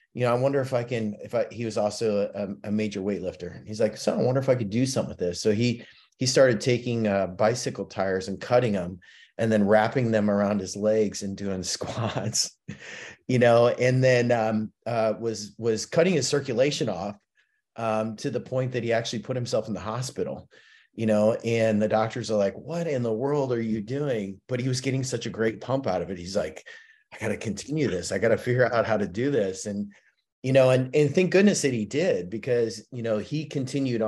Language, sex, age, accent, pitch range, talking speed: English, male, 30-49, American, 105-125 Hz, 225 wpm